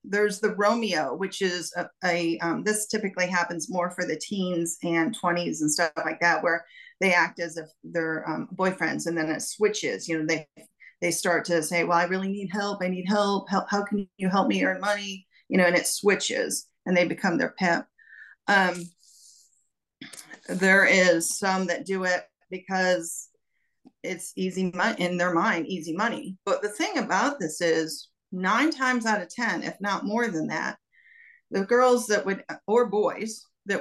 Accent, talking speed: American, 190 wpm